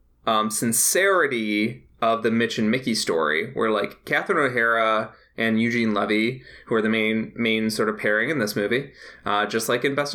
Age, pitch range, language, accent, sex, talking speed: 20-39, 105-130 Hz, English, American, male, 185 wpm